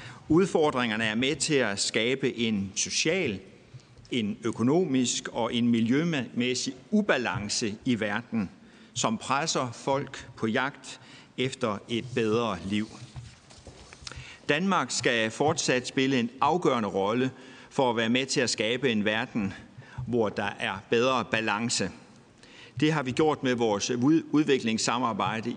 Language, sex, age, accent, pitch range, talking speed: Danish, male, 60-79, native, 115-145 Hz, 125 wpm